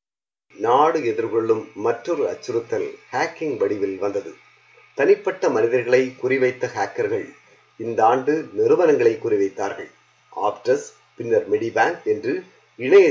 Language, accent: Tamil, native